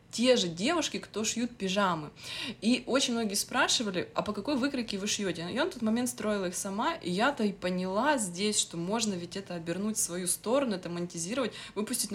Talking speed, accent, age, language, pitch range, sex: 195 wpm, native, 20-39, Russian, 175-220 Hz, female